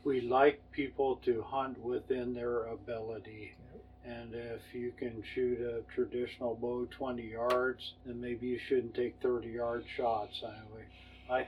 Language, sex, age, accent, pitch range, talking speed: English, male, 50-69, American, 115-135 Hz, 145 wpm